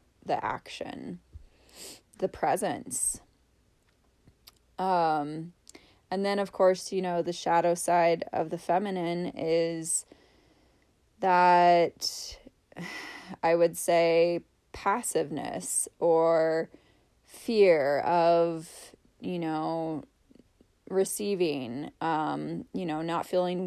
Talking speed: 85 wpm